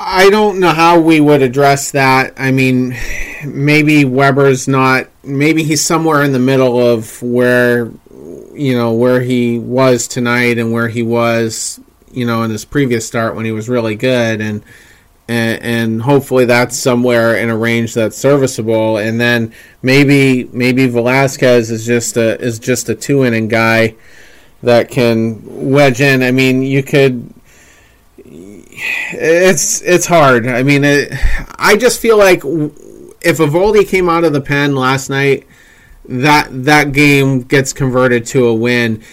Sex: male